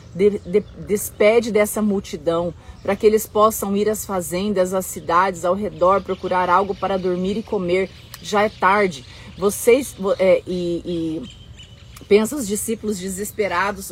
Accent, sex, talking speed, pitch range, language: Brazilian, female, 130 wpm, 190-230 Hz, Portuguese